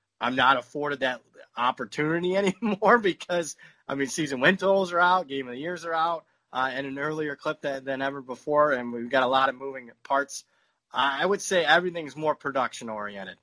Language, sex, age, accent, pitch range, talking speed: English, male, 30-49, American, 125-145 Hz, 190 wpm